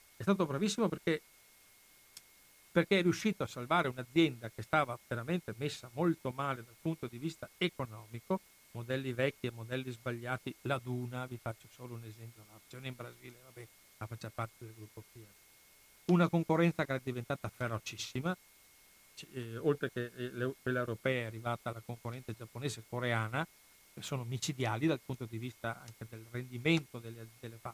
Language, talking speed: Italian, 160 wpm